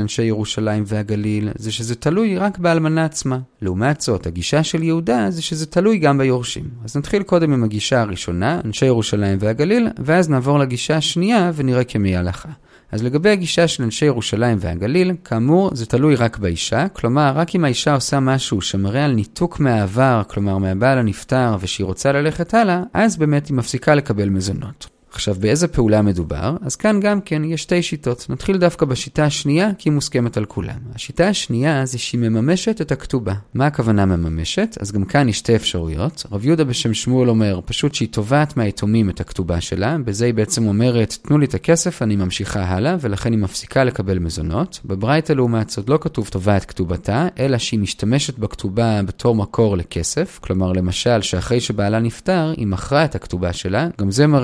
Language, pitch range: Hebrew, 105-150 Hz